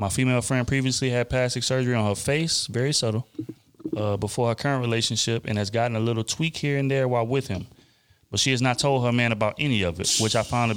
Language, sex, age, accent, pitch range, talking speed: English, male, 30-49, American, 115-135 Hz, 245 wpm